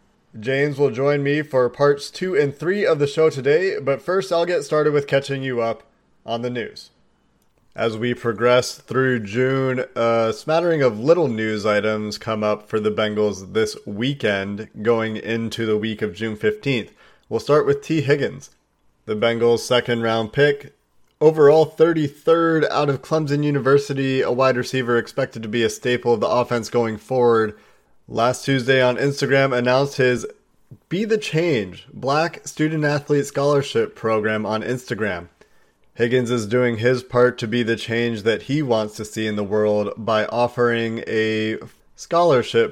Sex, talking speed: male, 160 wpm